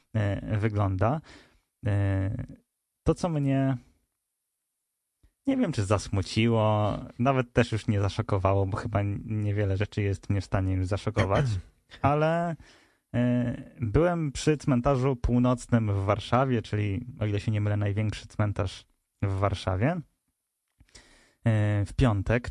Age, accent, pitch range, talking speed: 20-39, native, 105-130 Hz, 110 wpm